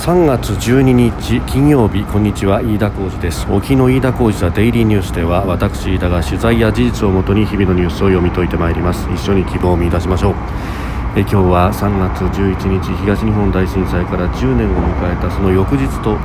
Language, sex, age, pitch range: Japanese, male, 40-59, 90-115 Hz